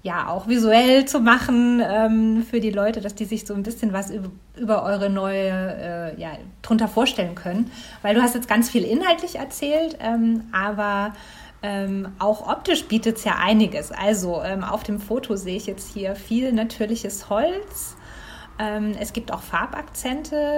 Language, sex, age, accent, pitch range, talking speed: German, female, 30-49, German, 200-235 Hz, 170 wpm